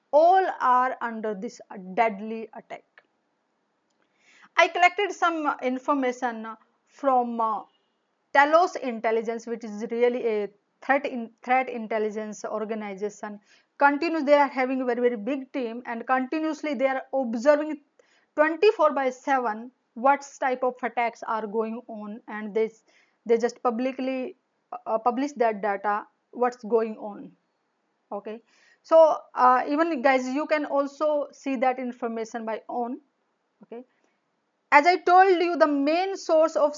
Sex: female